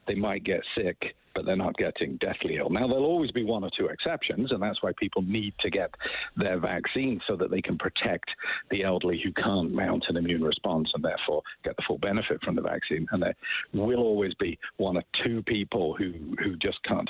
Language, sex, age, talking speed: English, male, 50-69, 220 wpm